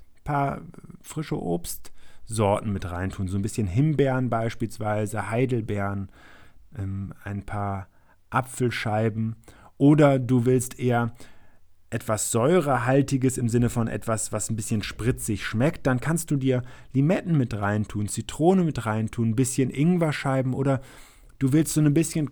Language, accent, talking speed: German, German, 130 wpm